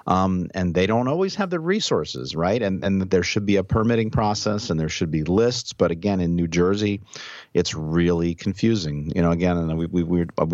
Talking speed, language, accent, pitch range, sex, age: 215 wpm, English, American, 85-115 Hz, male, 50-69